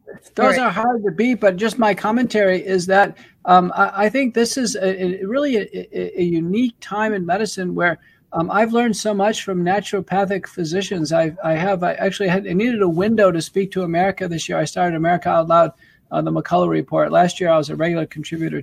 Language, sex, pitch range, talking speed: English, male, 165-195 Hz, 215 wpm